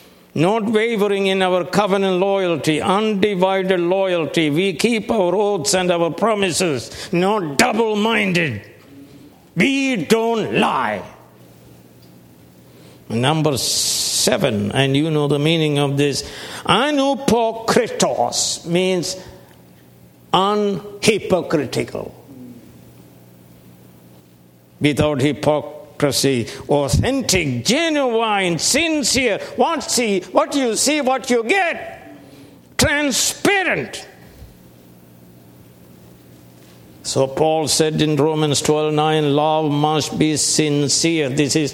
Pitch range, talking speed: 120-185 Hz, 85 wpm